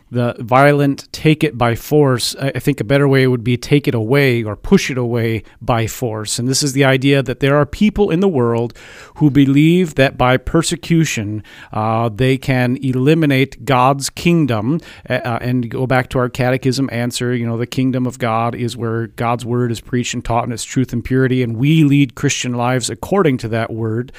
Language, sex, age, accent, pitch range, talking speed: English, male, 40-59, American, 120-140 Hz, 200 wpm